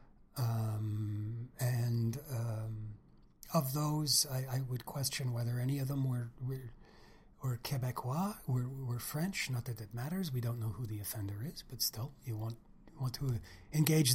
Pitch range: 115-145 Hz